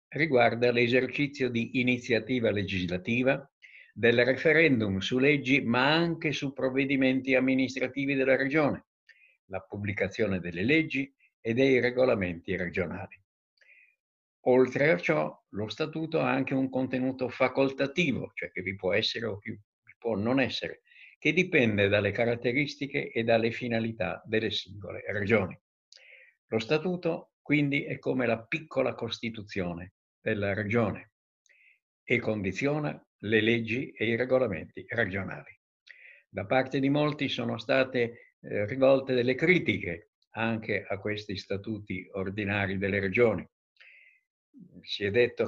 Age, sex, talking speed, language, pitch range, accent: 60-79, male, 120 wpm, Italian, 105-135 Hz, native